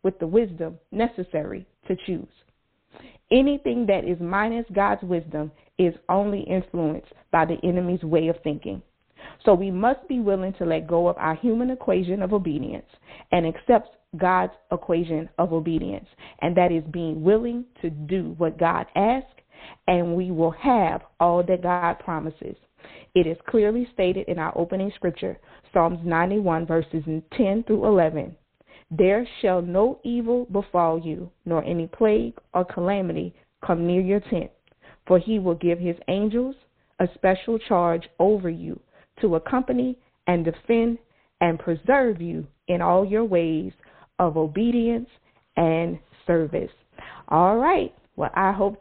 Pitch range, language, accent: 165-210 Hz, English, American